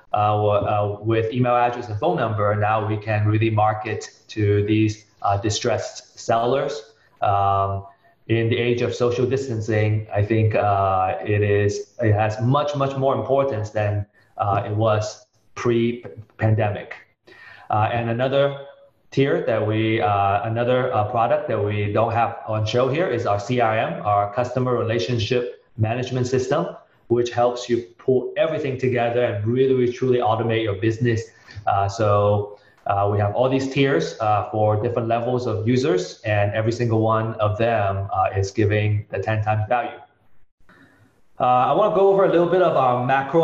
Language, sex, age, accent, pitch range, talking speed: English, male, 30-49, Chinese, 105-125 Hz, 165 wpm